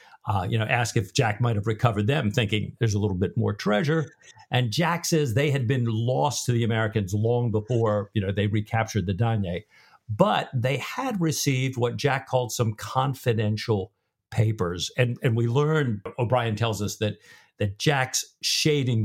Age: 50-69